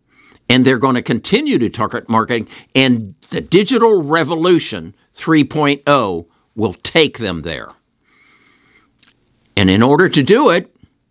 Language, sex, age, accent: English, male, 60-79, American